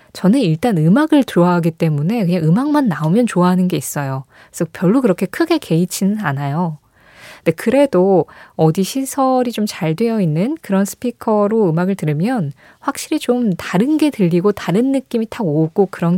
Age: 20-39